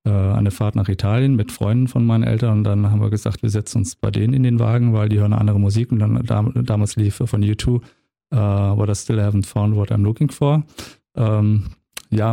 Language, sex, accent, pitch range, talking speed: German, male, German, 105-125 Hz, 225 wpm